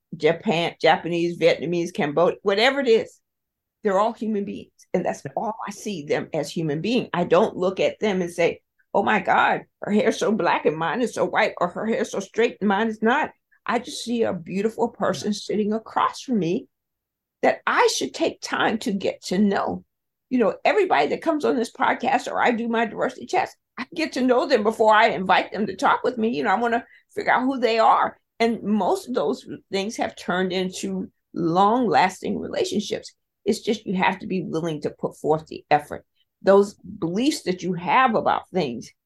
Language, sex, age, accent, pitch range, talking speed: English, female, 50-69, American, 180-240 Hz, 205 wpm